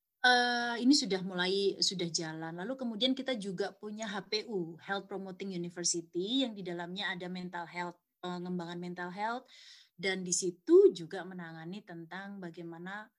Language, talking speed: Indonesian, 135 wpm